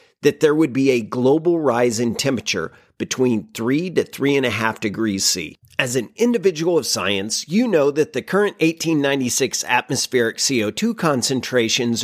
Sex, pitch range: male, 115-165 Hz